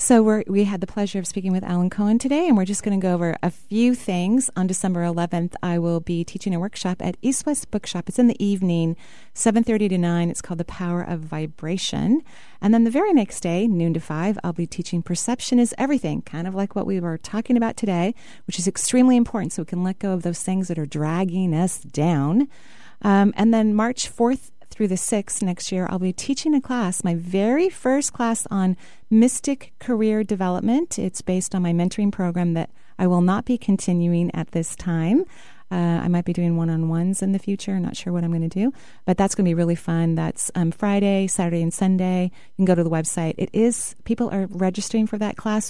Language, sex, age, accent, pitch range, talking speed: English, female, 30-49, American, 175-220 Hz, 225 wpm